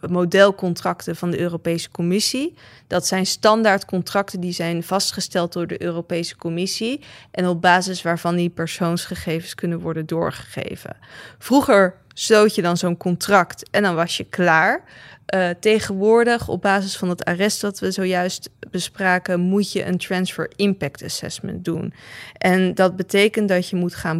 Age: 20-39